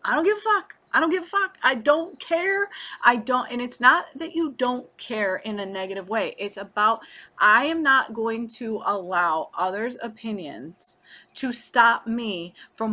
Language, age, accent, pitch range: English, 30-49, American, 195-280 Hz